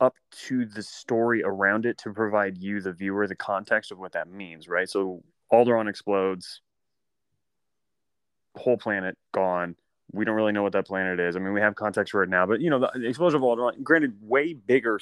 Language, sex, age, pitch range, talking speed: English, male, 20-39, 100-120 Hz, 200 wpm